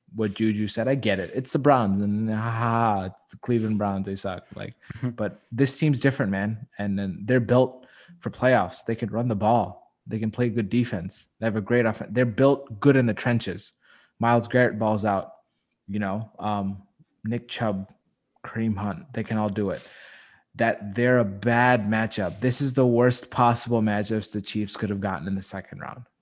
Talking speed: 195 wpm